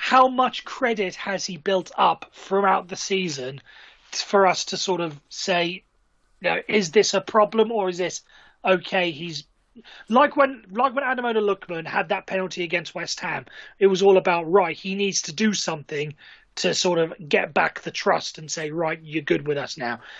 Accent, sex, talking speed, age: British, male, 190 wpm, 30-49